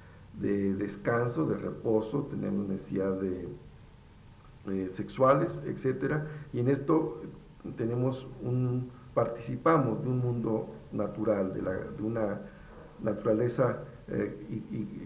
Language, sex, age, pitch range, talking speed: Spanish, male, 50-69, 105-140 Hz, 105 wpm